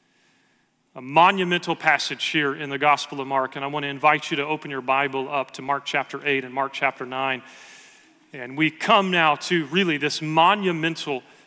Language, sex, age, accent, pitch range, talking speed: English, male, 40-59, American, 150-185 Hz, 190 wpm